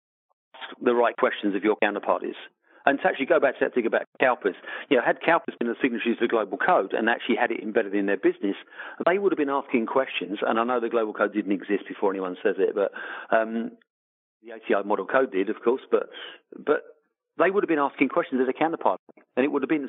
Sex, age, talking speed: male, 50-69, 235 wpm